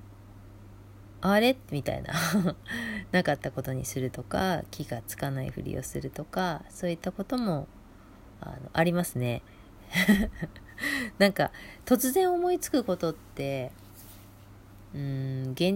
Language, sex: Japanese, female